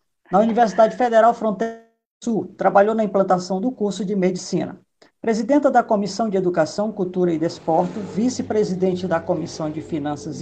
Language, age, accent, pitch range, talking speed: Portuguese, 50-69, Brazilian, 165-230 Hz, 145 wpm